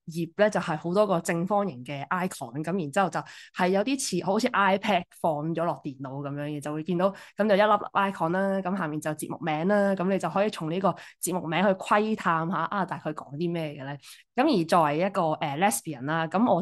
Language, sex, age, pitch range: Chinese, female, 20-39, 155-195 Hz